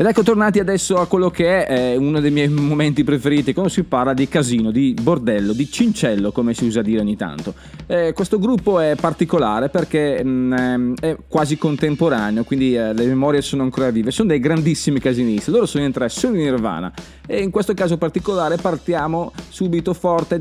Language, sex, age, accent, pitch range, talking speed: Italian, male, 30-49, native, 125-175 Hz, 190 wpm